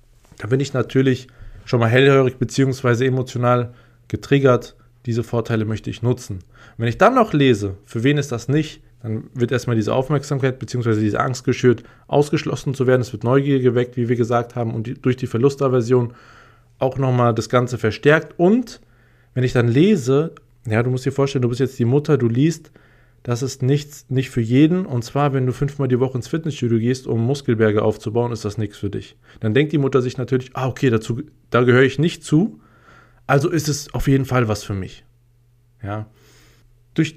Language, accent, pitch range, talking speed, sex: German, German, 120-140 Hz, 195 wpm, male